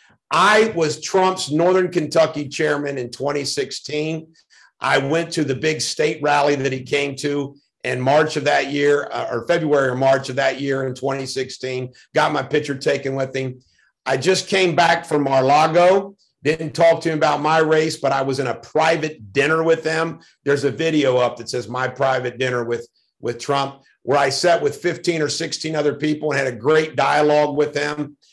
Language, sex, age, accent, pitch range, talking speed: English, male, 50-69, American, 140-180 Hz, 190 wpm